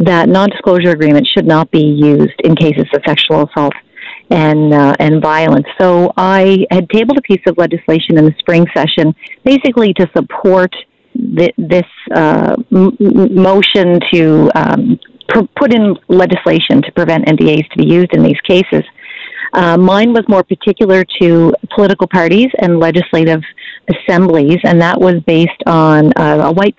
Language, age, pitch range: English, 40-59, 155-190 Hz